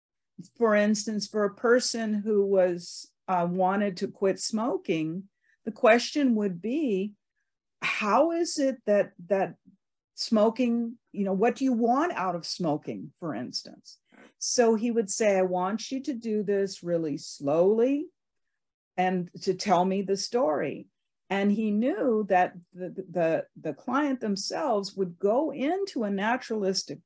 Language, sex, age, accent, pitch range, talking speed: English, female, 50-69, American, 185-245 Hz, 145 wpm